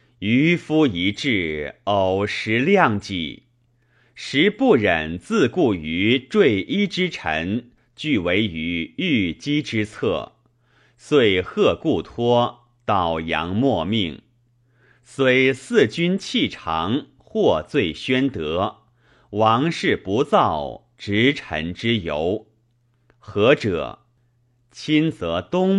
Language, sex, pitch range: Chinese, male, 105-135 Hz